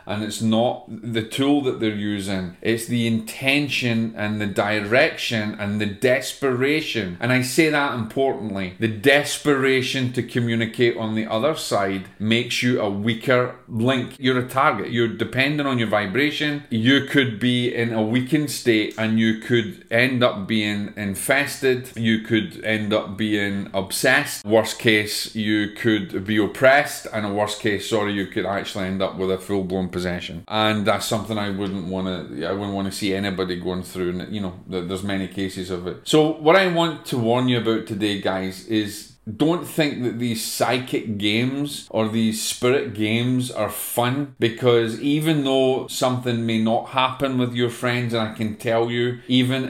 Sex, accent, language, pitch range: male, British, English, 105-125 Hz